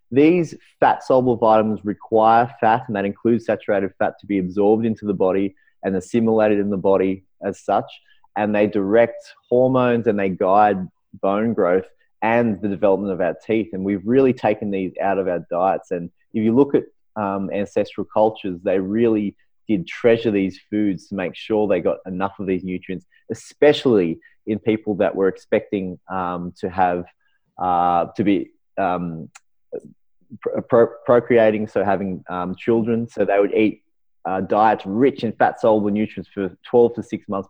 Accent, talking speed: Australian, 165 wpm